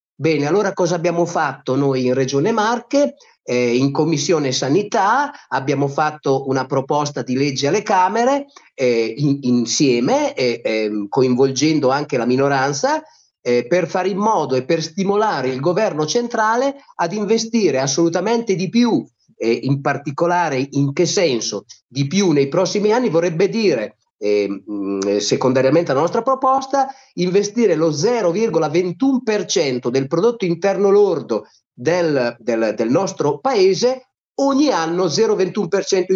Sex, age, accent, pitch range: male, 30-49, native, 135-215 Hz